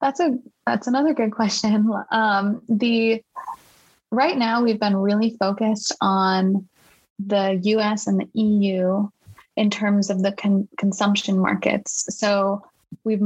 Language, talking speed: English, 130 wpm